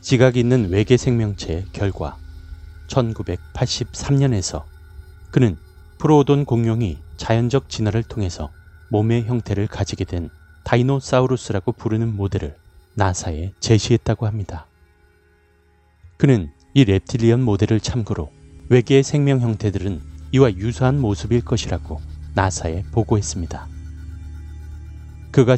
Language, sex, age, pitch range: Korean, male, 30-49, 85-120 Hz